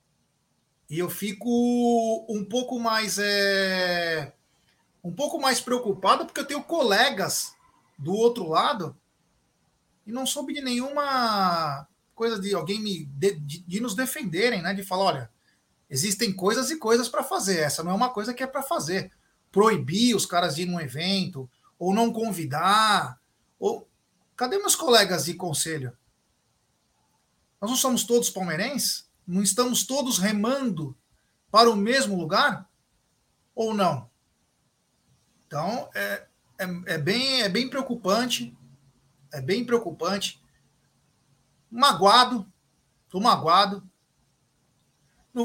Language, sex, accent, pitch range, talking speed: Portuguese, male, Brazilian, 175-240 Hz, 125 wpm